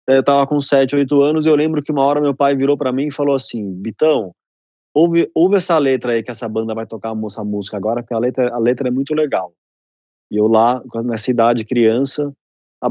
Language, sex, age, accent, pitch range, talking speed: Portuguese, male, 20-39, Brazilian, 115-145 Hz, 230 wpm